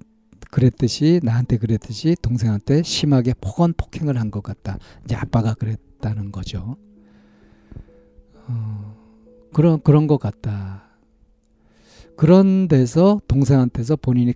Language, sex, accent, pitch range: Korean, male, native, 105-140 Hz